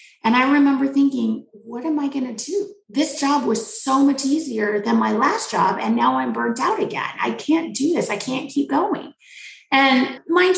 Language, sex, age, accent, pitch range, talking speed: English, female, 30-49, American, 210-300 Hz, 205 wpm